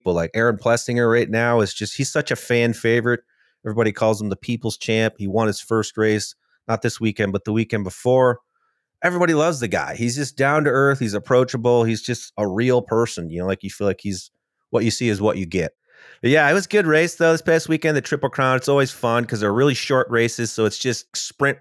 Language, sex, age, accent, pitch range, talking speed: English, male, 30-49, American, 110-140 Hz, 240 wpm